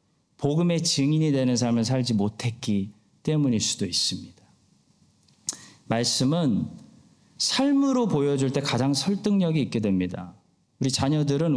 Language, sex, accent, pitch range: Korean, male, native, 125-195 Hz